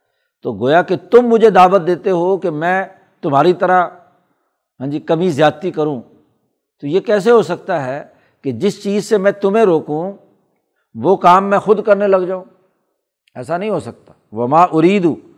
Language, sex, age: Urdu, male, 60-79